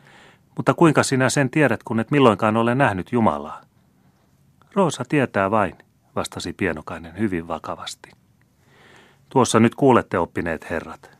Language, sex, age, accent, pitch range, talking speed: Finnish, male, 30-49, native, 85-110 Hz, 125 wpm